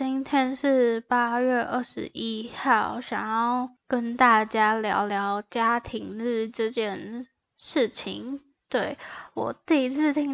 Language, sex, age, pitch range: Chinese, female, 10-29, 215-250 Hz